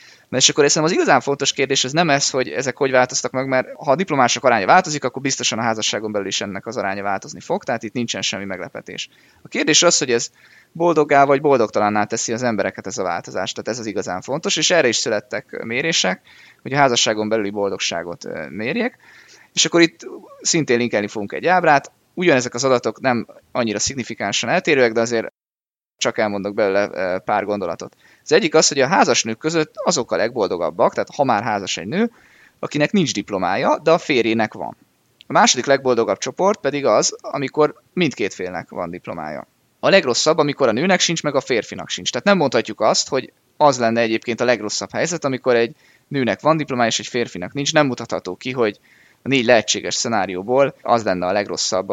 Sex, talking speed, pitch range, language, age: male, 190 wpm, 110-145 Hz, Hungarian, 20-39